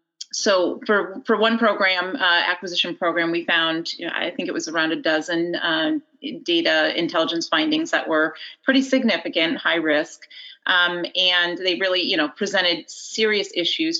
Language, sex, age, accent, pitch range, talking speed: English, female, 30-49, American, 170-285 Hz, 165 wpm